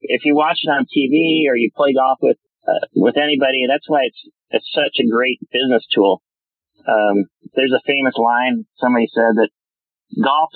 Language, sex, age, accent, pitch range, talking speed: English, male, 40-59, American, 115-155 Hz, 180 wpm